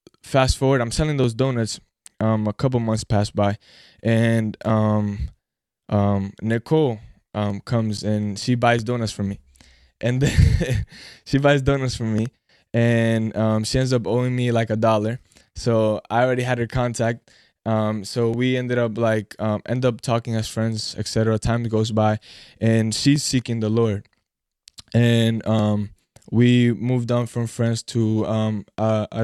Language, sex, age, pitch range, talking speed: English, male, 20-39, 110-120 Hz, 160 wpm